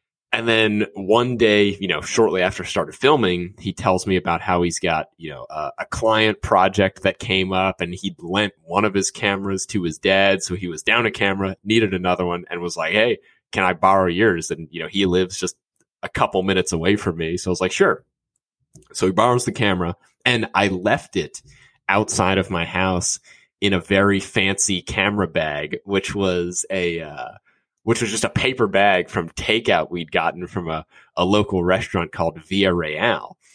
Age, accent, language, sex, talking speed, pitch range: 20-39, American, English, male, 200 wpm, 90-110 Hz